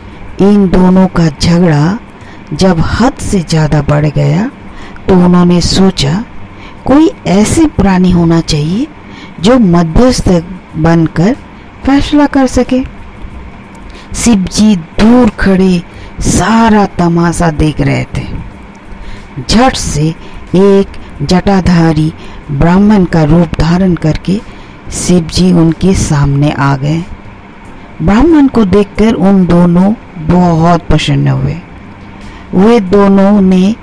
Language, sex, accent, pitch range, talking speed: Hindi, female, native, 155-200 Hz, 105 wpm